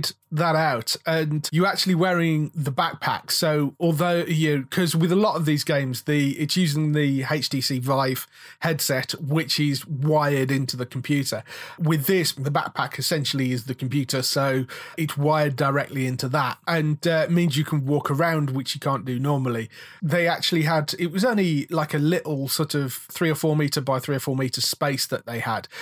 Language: English